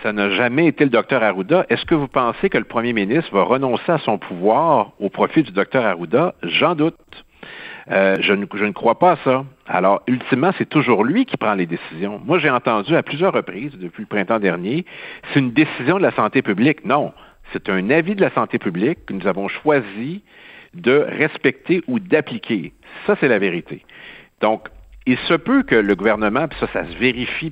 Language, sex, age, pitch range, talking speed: French, male, 60-79, 110-160 Hz, 205 wpm